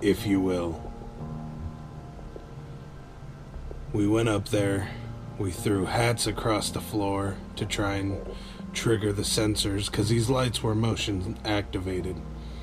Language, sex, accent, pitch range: English, male, American, 95-110 Hz